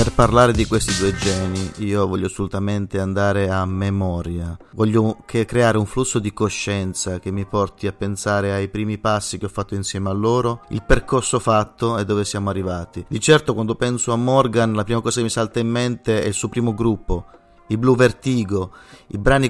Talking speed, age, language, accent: 195 wpm, 30-49, Italian, native